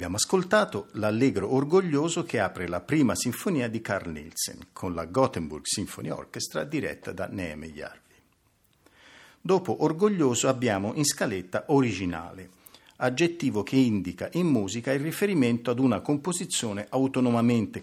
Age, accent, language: 50-69, native, Italian